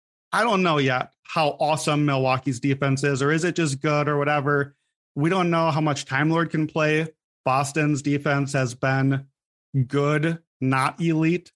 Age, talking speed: 30-49, 165 wpm